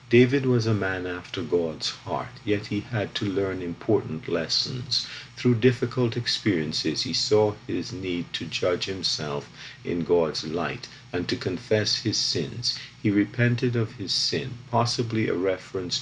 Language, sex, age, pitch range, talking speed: English, male, 50-69, 95-125 Hz, 150 wpm